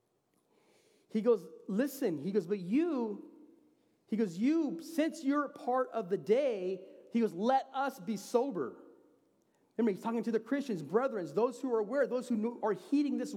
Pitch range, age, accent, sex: 195-260 Hz, 40-59, American, male